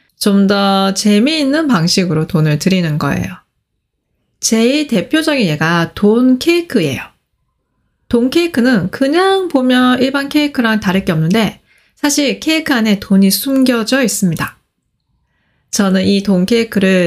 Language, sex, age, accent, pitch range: Korean, female, 20-39, native, 185-275 Hz